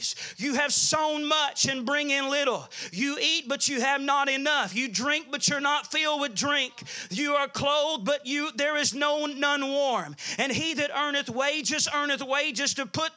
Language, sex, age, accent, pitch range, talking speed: English, male, 40-59, American, 275-300 Hz, 190 wpm